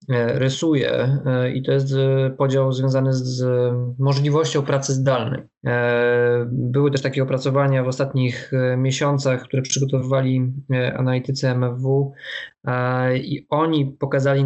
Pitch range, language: 130-140 Hz, Polish